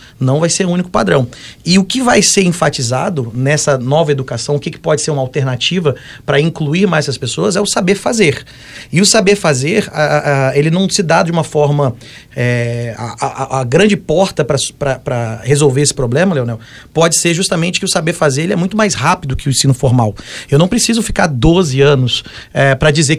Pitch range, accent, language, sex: 140-180 Hz, Brazilian, Portuguese, male